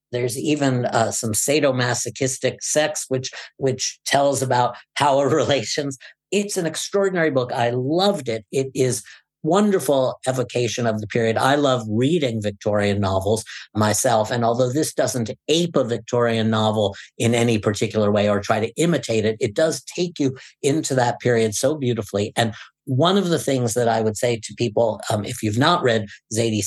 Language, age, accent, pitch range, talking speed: English, 50-69, American, 110-135 Hz, 170 wpm